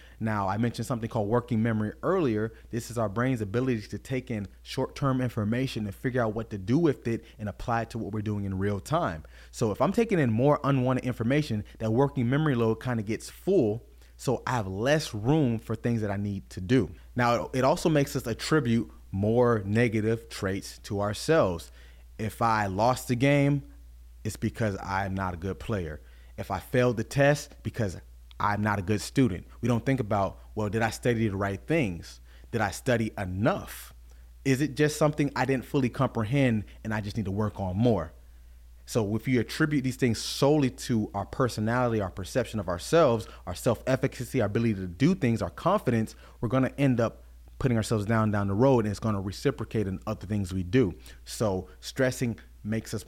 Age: 30-49